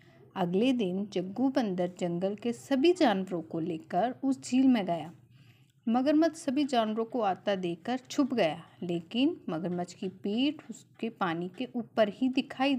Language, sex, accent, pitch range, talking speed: Hindi, female, native, 185-255 Hz, 150 wpm